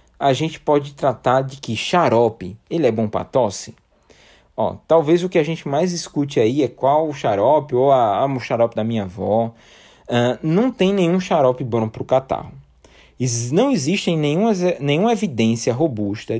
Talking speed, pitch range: 160 wpm, 115-170 Hz